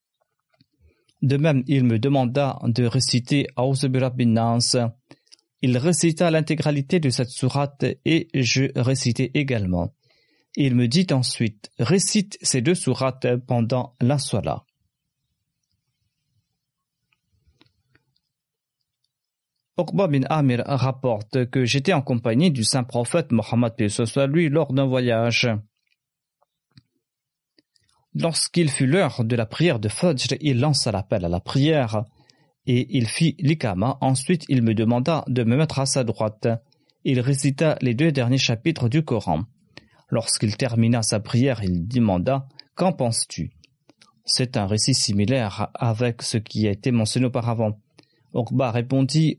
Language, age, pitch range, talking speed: French, 40-59, 120-145 Hz, 130 wpm